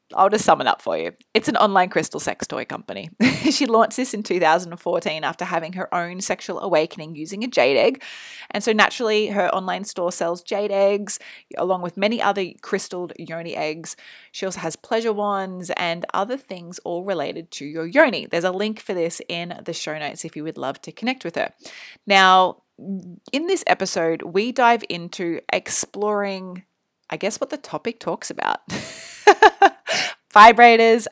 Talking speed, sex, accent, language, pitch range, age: 175 wpm, female, Australian, English, 170-220 Hz, 20-39